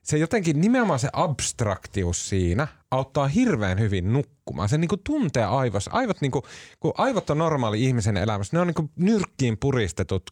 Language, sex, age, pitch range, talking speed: Finnish, male, 30-49, 95-145 Hz, 165 wpm